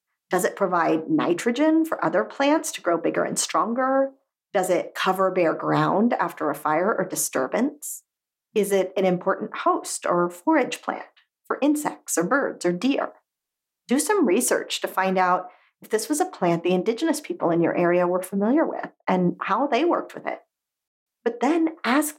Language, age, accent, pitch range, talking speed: English, 40-59, American, 185-300 Hz, 175 wpm